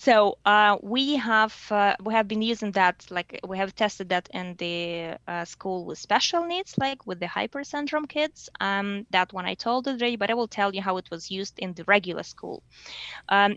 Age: 20-39